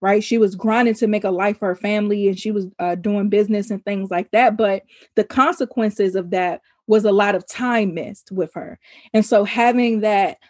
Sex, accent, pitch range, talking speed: female, American, 195-230 Hz, 215 wpm